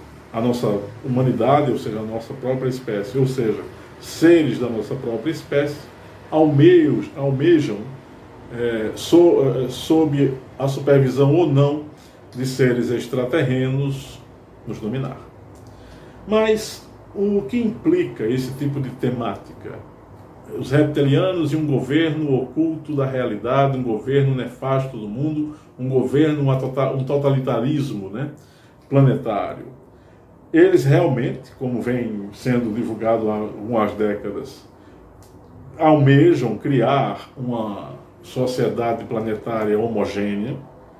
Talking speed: 110 wpm